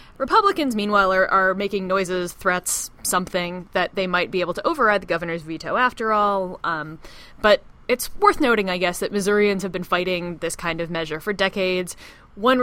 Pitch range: 170-215 Hz